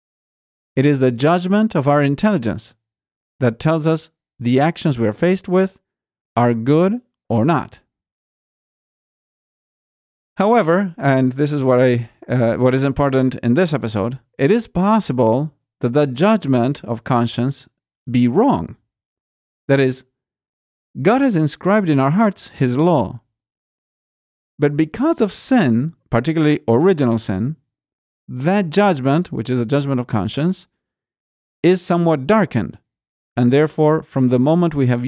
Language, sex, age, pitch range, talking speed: English, male, 40-59, 120-170 Hz, 135 wpm